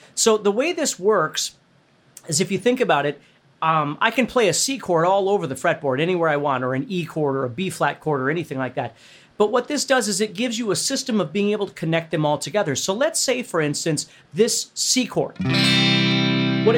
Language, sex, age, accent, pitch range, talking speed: English, male, 40-59, American, 145-220 Hz, 235 wpm